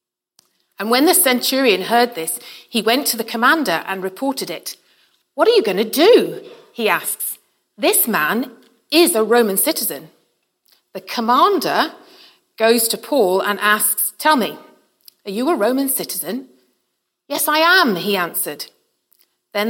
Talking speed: 145 wpm